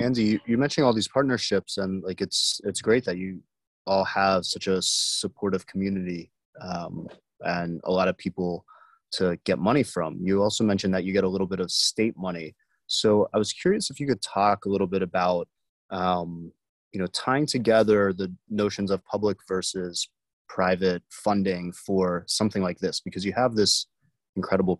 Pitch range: 90-105 Hz